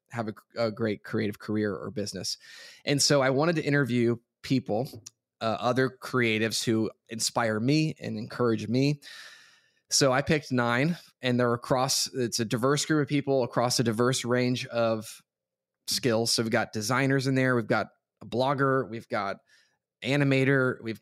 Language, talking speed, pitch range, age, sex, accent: English, 165 wpm, 115-135 Hz, 20-39, male, American